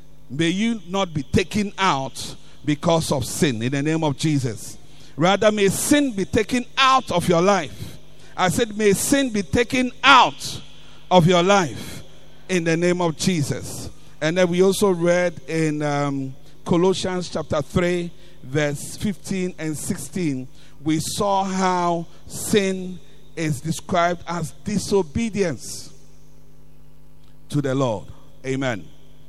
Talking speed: 130 wpm